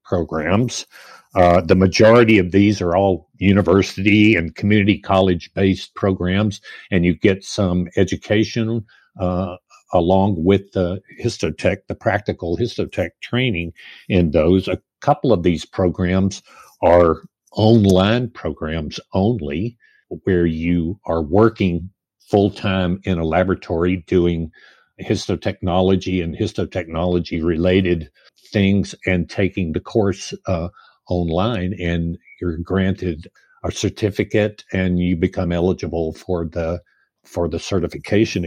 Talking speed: 110 wpm